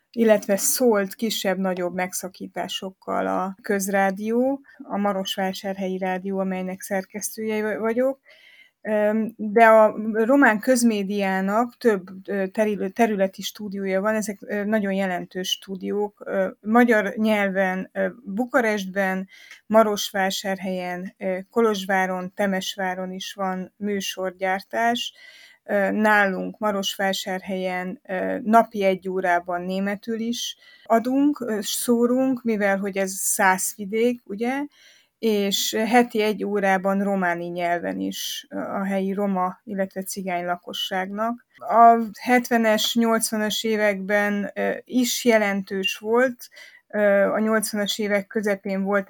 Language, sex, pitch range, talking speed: Hungarian, female, 190-225 Hz, 90 wpm